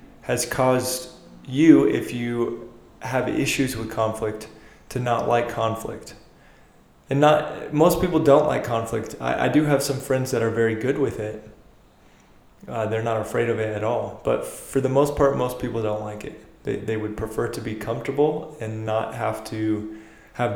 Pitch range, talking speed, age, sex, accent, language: 110-125 Hz, 180 wpm, 20-39, male, American, English